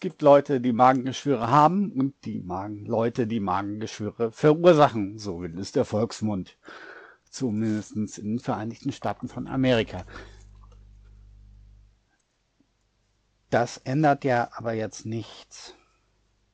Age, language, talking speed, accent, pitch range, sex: 60-79, German, 110 wpm, German, 105-135 Hz, male